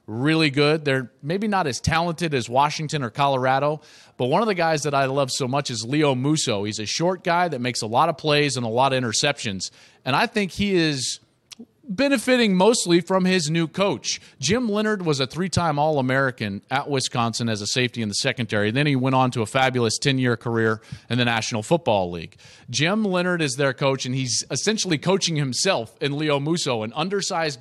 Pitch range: 120-155 Hz